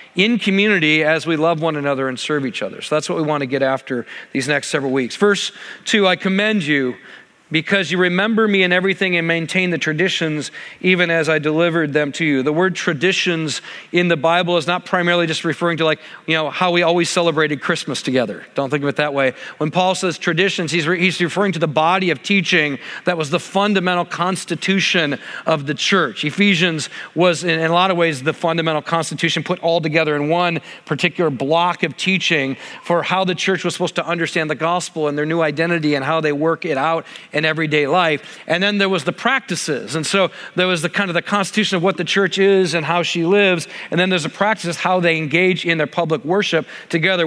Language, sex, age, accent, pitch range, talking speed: English, male, 40-59, American, 155-180 Hz, 220 wpm